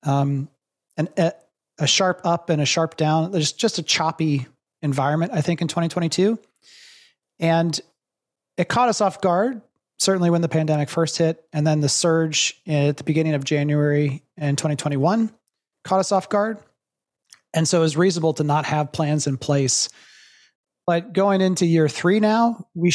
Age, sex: 30-49, male